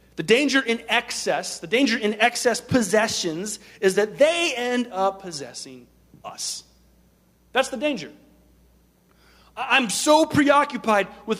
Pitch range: 160-255 Hz